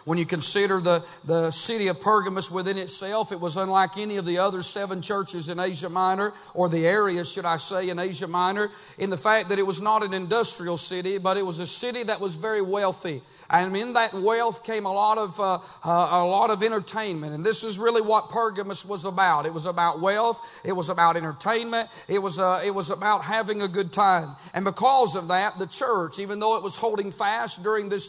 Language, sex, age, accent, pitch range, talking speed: English, male, 40-59, American, 185-225 Hz, 220 wpm